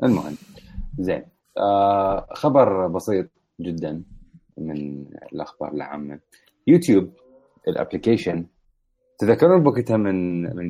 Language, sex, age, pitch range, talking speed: Arabic, male, 30-49, 80-105 Hz, 85 wpm